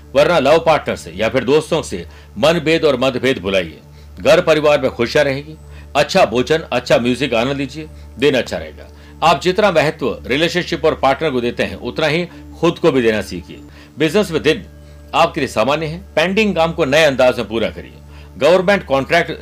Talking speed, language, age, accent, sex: 75 wpm, Hindi, 60-79, native, male